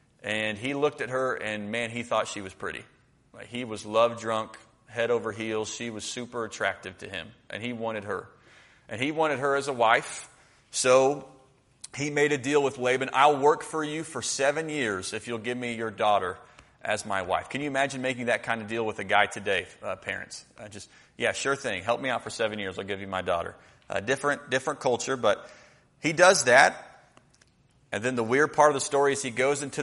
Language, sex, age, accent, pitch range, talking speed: English, male, 30-49, American, 115-140 Hz, 220 wpm